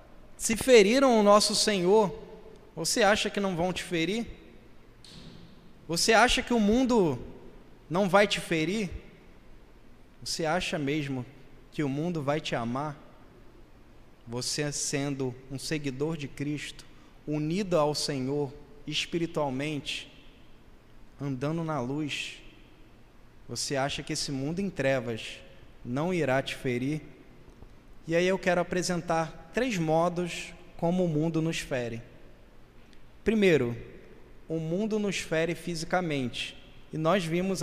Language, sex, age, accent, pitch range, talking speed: Portuguese, male, 20-39, Brazilian, 140-185 Hz, 120 wpm